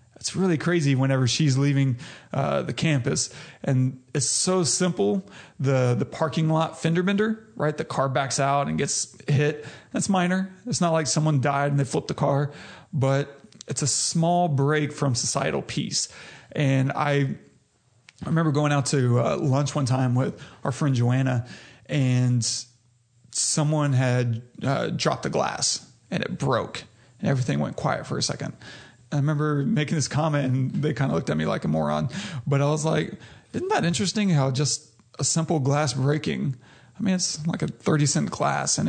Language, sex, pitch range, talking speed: English, male, 130-155 Hz, 180 wpm